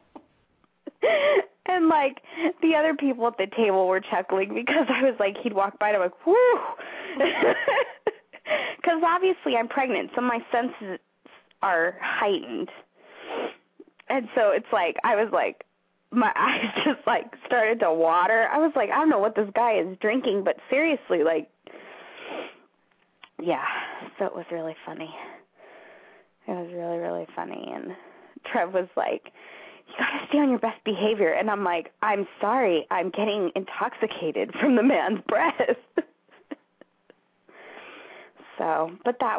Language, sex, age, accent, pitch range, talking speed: English, female, 20-39, American, 185-270 Hz, 145 wpm